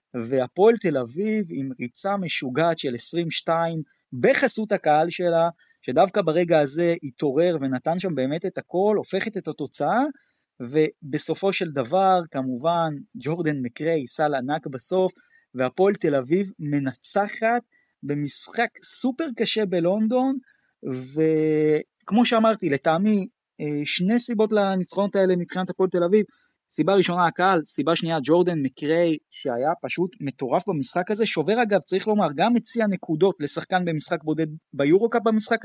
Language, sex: Hebrew, male